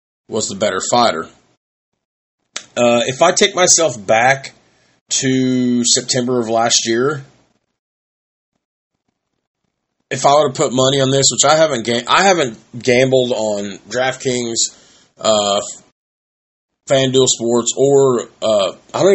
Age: 30-49